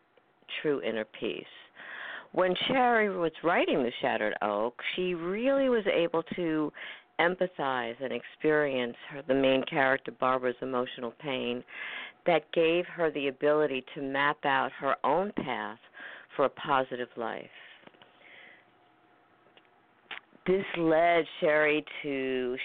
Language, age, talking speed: English, 50-69, 120 wpm